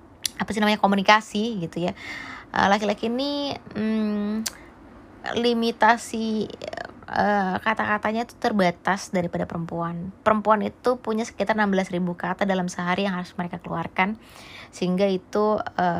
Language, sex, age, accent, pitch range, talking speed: Indonesian, female, 20-39, native, 180-215 Hz, 120 wpm